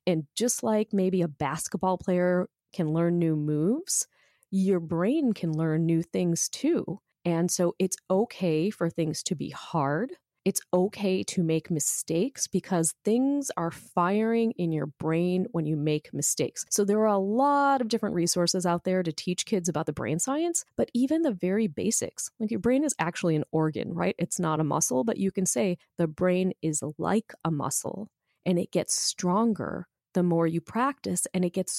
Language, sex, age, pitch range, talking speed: English, female, 30-49, 165-220 Hz, 185 wpm